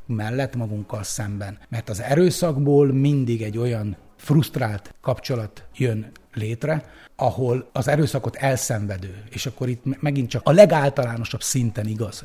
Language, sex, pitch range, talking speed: Hungarian, male, 110-145 Hz, 125 wpm